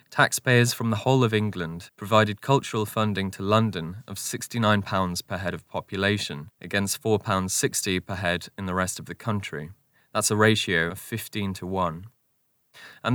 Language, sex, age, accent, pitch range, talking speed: English, male, 20-39, British, 95-120 Hz, 160 wpm